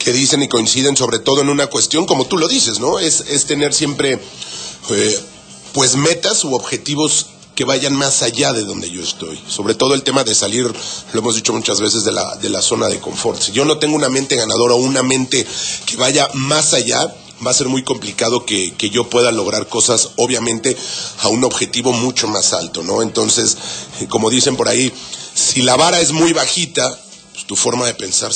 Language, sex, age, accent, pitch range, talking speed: Spanish, male, 40-59, Mexican, 115-145 Hz, 205 wpm